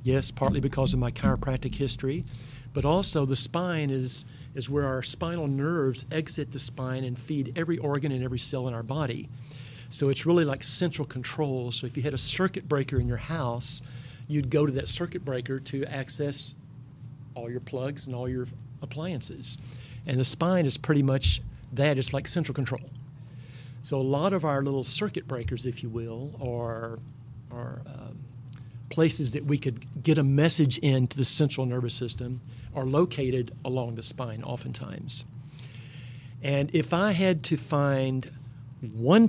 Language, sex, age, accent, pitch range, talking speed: English, male, 50-69, American, 125-145 Hz, 170 wpm